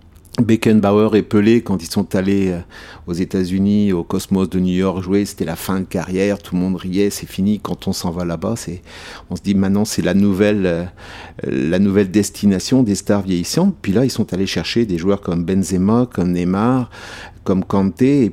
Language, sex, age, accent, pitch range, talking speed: French, male, 50-69, French, 95-110 Hz, 200 wpm